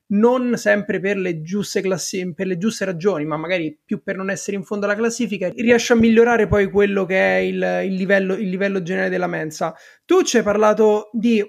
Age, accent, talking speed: 30-49, native, 185 wpm